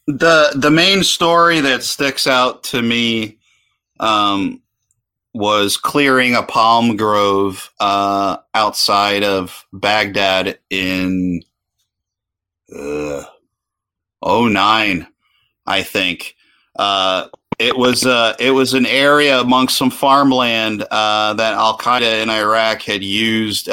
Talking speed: 110 wpm